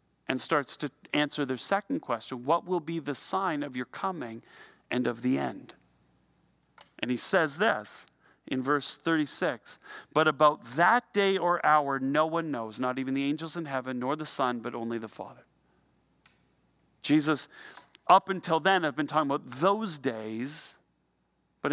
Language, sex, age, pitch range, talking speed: English, male, 40-59, 140-180 Hz, 165 wpm